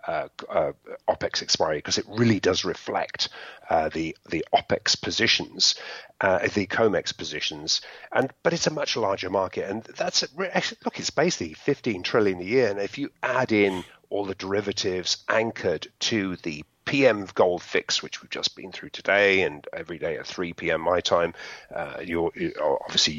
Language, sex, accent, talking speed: English, male, British, 170 wpm